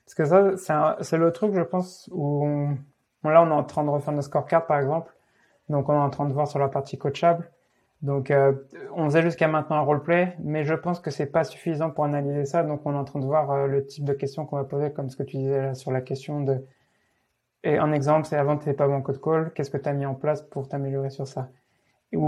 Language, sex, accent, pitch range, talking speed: French, male, French, 140-165 Hz, 265 wpm